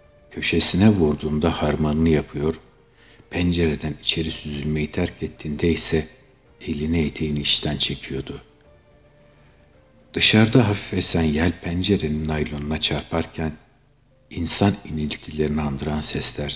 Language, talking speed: Turkish, 90 wpm